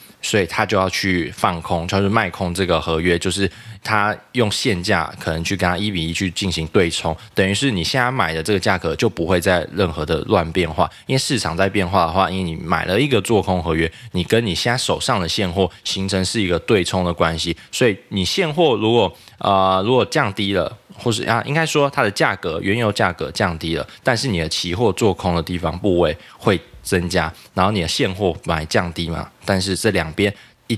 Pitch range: 85-105 Hz